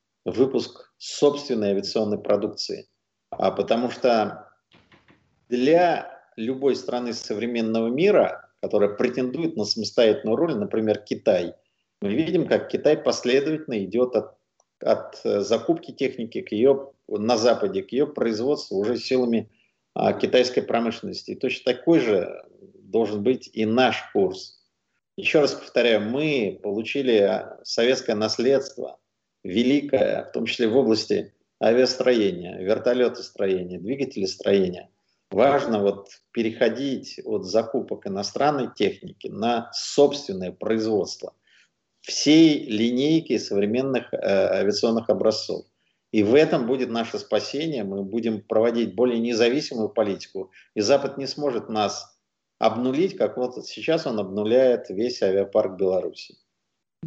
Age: 50-69